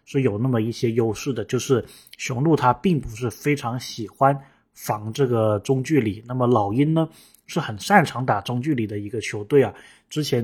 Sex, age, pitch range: male, 20-39, 115-140 Hz